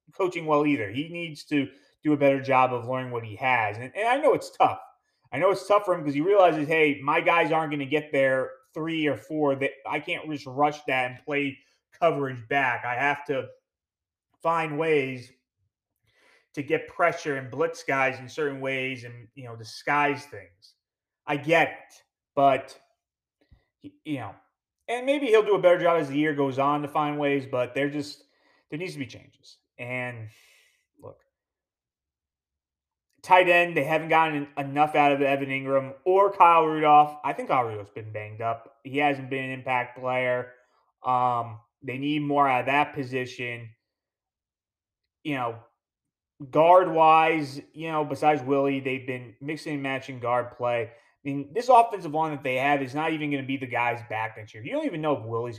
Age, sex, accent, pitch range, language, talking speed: 30-49, male, American, 125-155 Hz, English, 190 wpm